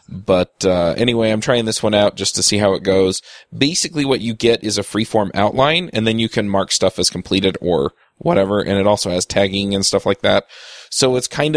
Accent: American